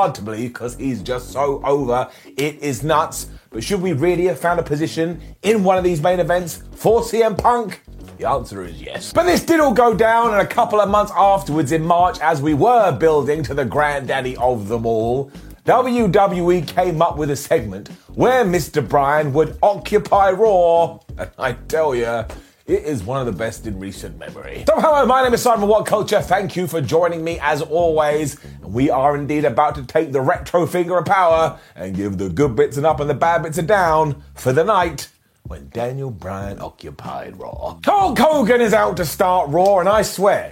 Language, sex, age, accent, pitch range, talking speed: English, male, 30-49, British, 145-205 Hz, 205 wpm